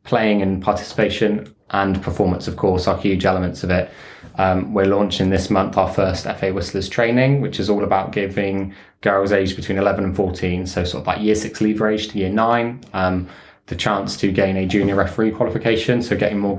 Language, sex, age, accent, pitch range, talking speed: English, male, 20-39, British, 95-105 Hz, 200 wpm